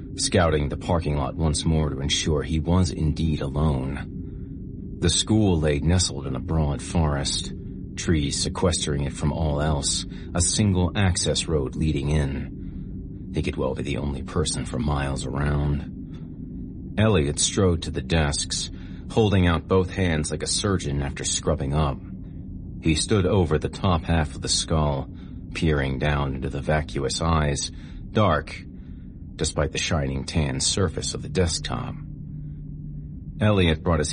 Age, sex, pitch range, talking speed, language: 40-59, male, 75-90 Hz, 150 wpm, English